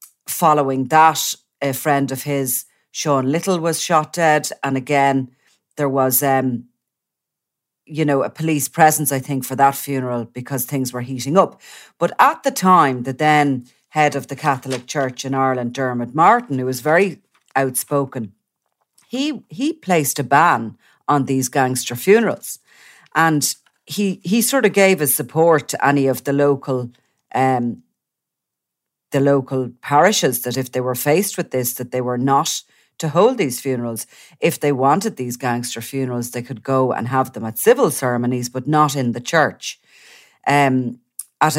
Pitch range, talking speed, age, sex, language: 125-150 Hz, 165 wpm, 40-59, female, English